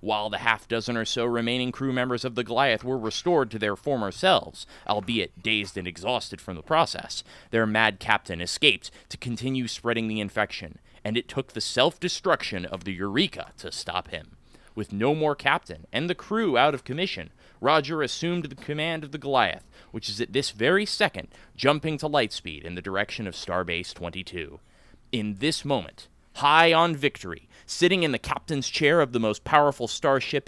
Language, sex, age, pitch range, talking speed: English, male, 30-49, 100-145 Hz, 185 wpm